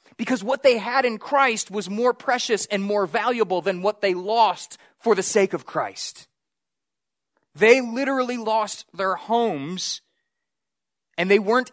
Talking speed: 150 wpm